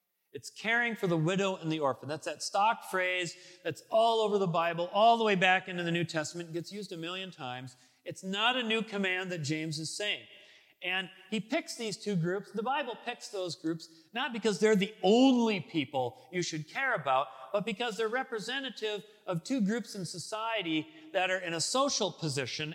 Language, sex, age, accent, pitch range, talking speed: English, male, 40-59, American, 165-220 Hz, 200 wpm